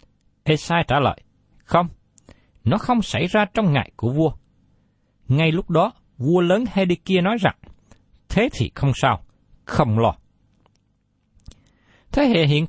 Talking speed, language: 135 wpm, Vietnamese